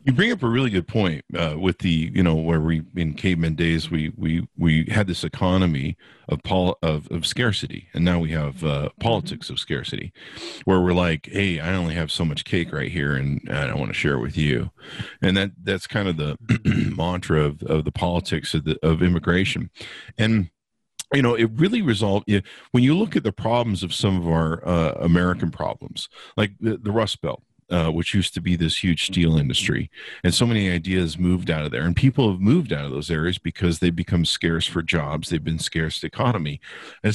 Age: 50-69